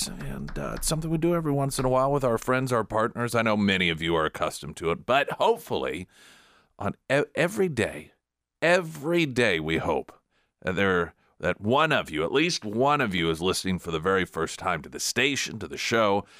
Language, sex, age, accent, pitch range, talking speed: English, male, 40-59, American, 80-115 Hz, 210 wpm